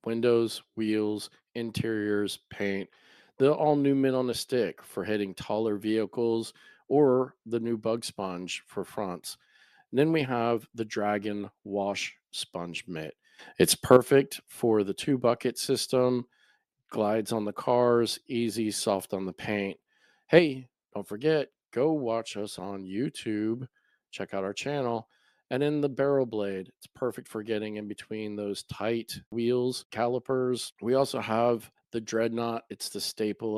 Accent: American